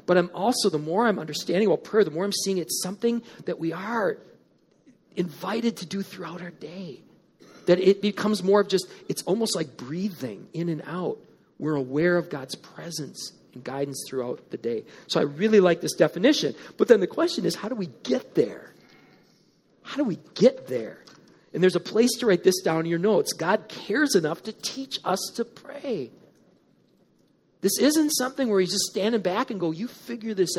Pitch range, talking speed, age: 165-215 Hz, 195 wpm, 40-59